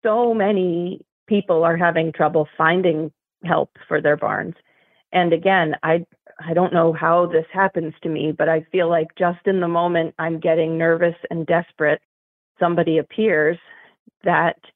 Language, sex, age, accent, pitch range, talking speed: English, female, 40-59, American, 160-185 Hz, 155 wpm